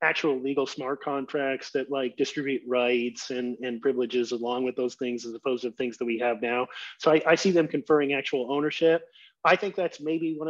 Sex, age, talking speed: male, 30-49, 205 wpm